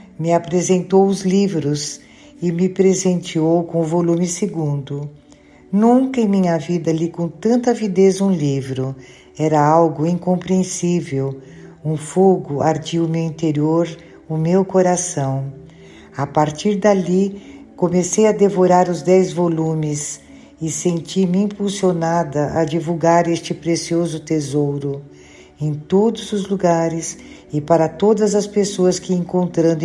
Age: 50-69